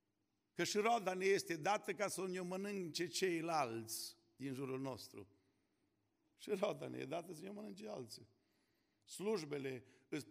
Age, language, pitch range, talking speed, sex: 50-69, Romanian, 115-175 Hz, 145 wpm, male